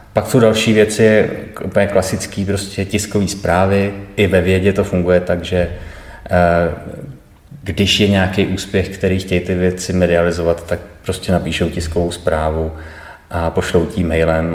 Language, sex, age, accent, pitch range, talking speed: Czech, male, 30-49, native, 90-100 Hz, 140 wpm